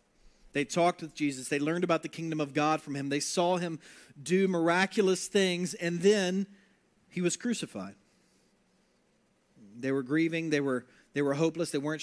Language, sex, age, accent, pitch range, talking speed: English, male, 40-59, American, 165-205 Hz, 170 wpm